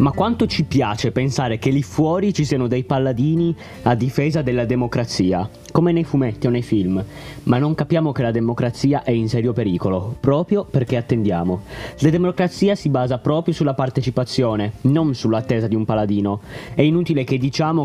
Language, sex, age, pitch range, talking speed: Italian, male, 20-39, 115-150 Hz, 170 wpm